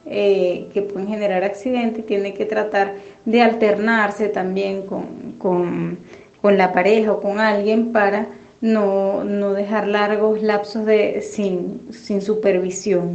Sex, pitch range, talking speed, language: female, 195-225 Hz, 130 wpm, Spanish